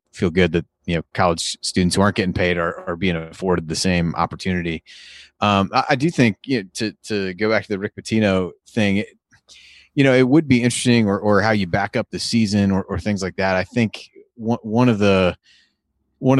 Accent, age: American, 30-49